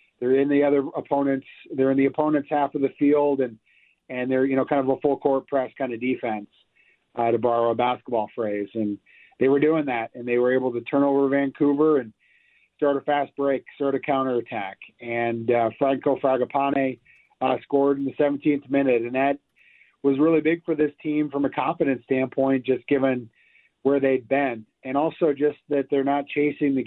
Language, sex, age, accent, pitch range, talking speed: English, male, 40-59, American, 130-140 Hz, 200 wpm